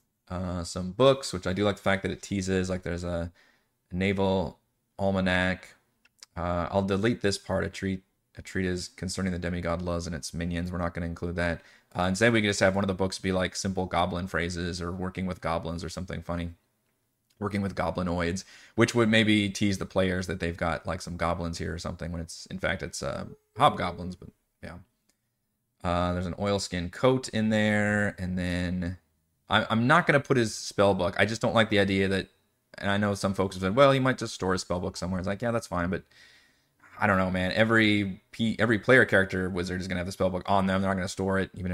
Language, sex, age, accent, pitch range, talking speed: English, male, 20-39, American, 90-105 Hz, 225 wpm